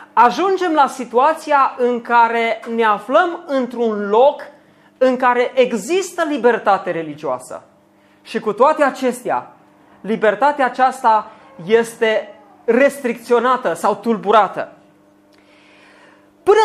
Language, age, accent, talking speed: Romanian, 30-49, native, 90 wpm